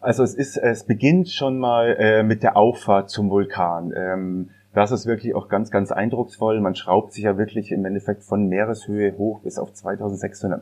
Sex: male